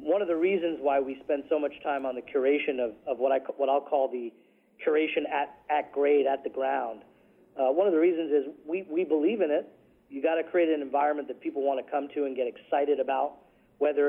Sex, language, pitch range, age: male, English, 135-160 Hz, 40-59